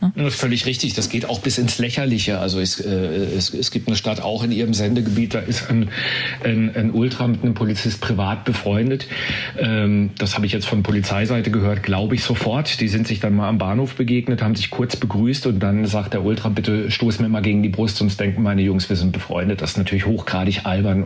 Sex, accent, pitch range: male, German, 100-120 Hz